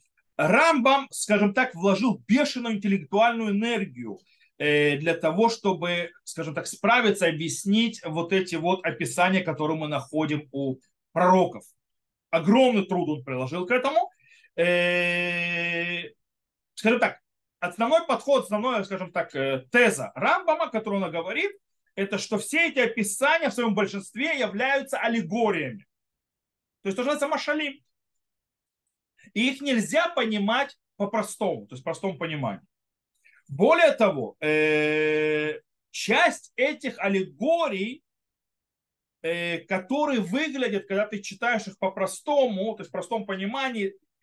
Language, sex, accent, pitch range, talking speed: Russian, male, native, 175-245 Hz, 115 wpm